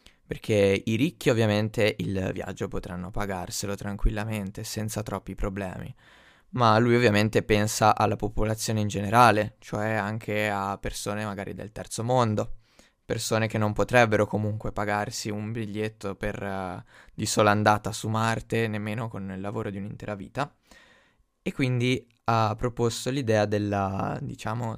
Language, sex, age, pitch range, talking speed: Italian, male, 20-39, 105-115 Hz, 140 wpm